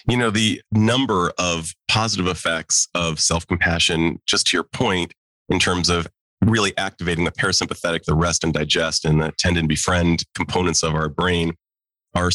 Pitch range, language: 85-100 Hz, English